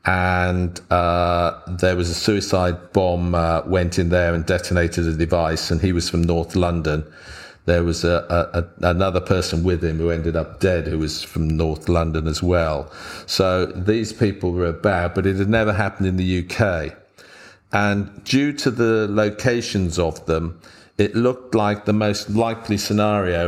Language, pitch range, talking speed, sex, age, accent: English, 85-105 Hz, 165 wpm, male, 50-69, British